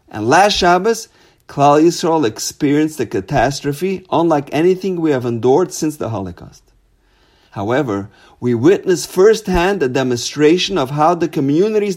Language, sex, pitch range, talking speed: English, male, 120-180 Hz, 130 wpm